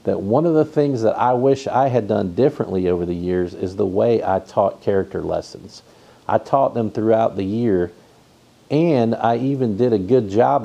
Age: 50-69